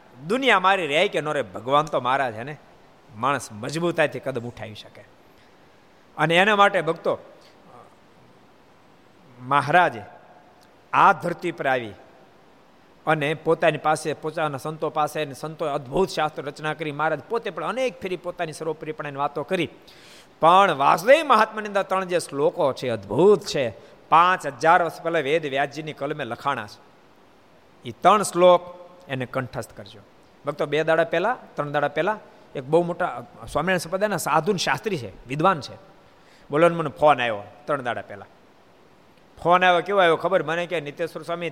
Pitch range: 145-185 Hz